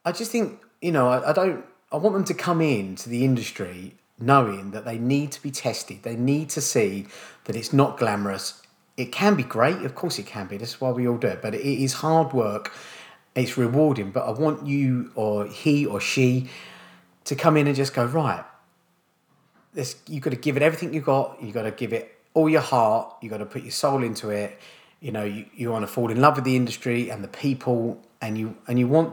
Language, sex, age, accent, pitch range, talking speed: English, male, 30-49, British, 110-140 Hz, 235 wpm